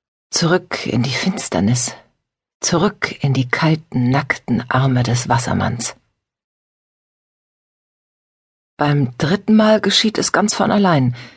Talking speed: 105 wpm